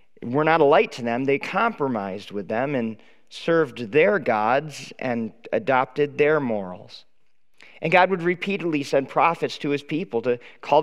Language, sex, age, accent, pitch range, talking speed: English, male, 40-59, American, 120-170 Hz, 160 wpm